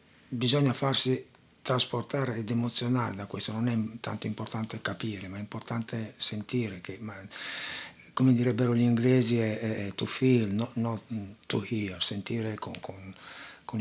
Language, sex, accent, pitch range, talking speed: Italian, male, native, 105-130 Hz, 120 wpm